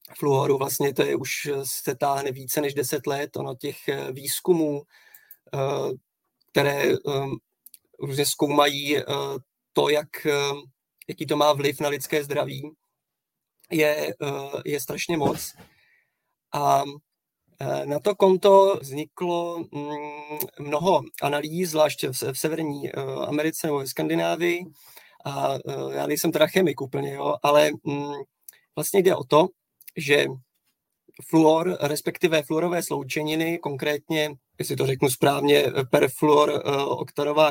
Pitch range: 140-155 Hz